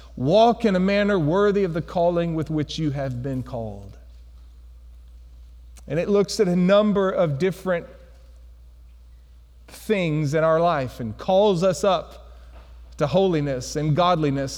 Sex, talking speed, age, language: male, 140 wpm, 40-59, English